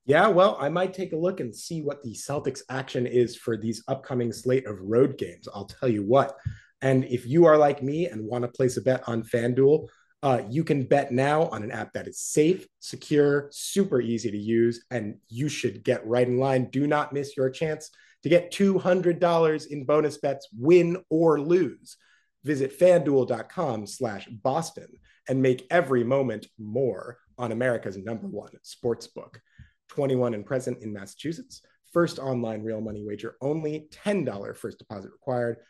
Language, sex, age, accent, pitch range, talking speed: English, male, 30-49, American, 120-155 Hz, 180 wpm